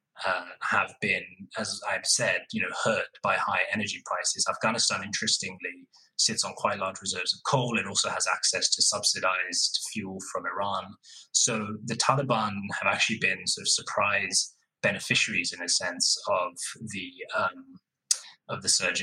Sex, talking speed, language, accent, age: male, 160 wpm, English, British, 20-39